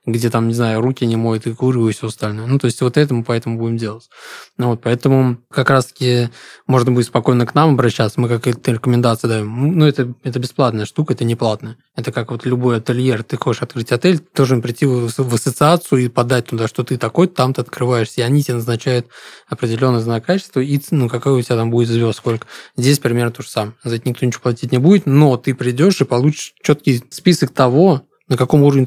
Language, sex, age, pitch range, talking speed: Russian, male, 20-39, 120-135 Hz, 220 wpm